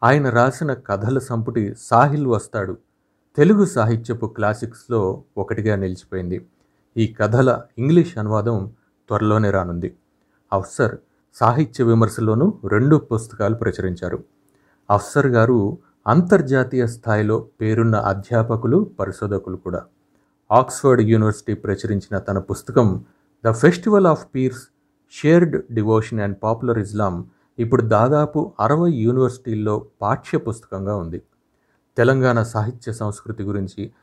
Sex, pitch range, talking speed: male, 105-130 Hz, 95 wpm